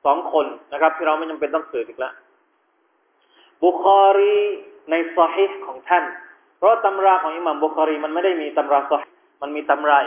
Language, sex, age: Thai, male, 20-39